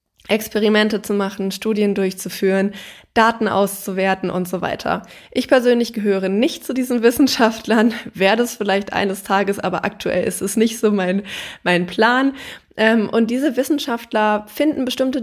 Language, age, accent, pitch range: German, 20-39, German, 190-225 Hz